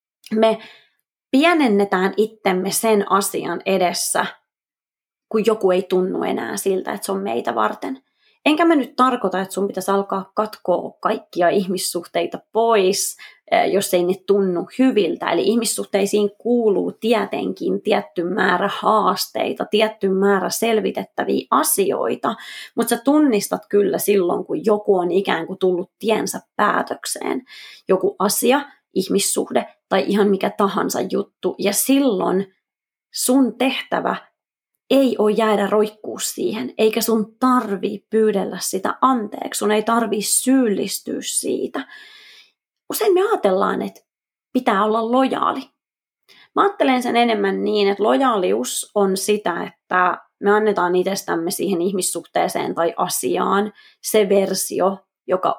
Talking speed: 120 wpm